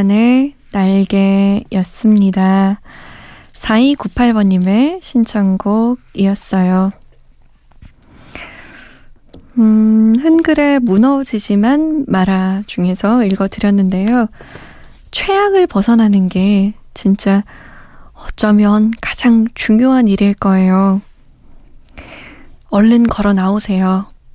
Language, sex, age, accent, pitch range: Korean, female, 20-39, native, 200-240 Hz